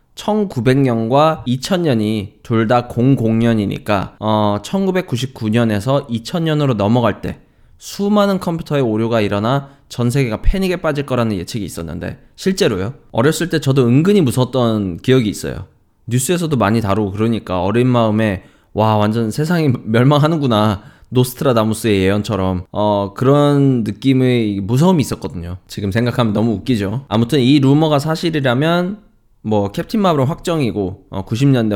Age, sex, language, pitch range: 20-39, male, Korean, 105-140 Hz